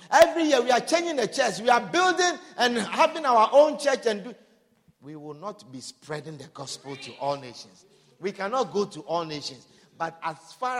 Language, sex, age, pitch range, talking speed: English, male, 50-69, 180-280 Hz, 195 wpm